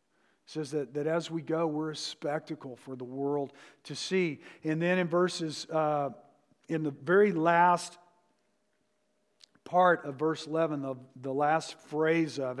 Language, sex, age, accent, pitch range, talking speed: English, male, 50-69, American, 150-170 Hz, 150 wpm